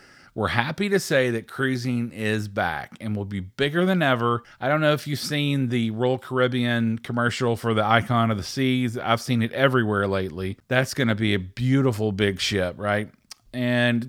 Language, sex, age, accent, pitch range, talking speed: English, male, 40-59, American, 110-140 Hz, 190 wpm